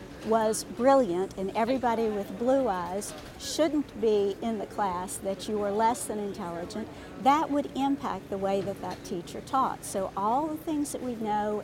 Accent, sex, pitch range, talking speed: American, female, 205-265 Hz, 175 wpm